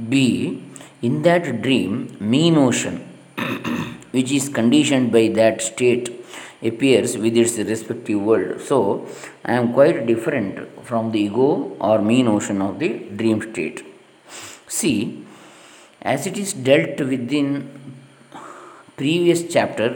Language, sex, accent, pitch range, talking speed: Kannada, male, native, 115-145 Hz, 125 wpm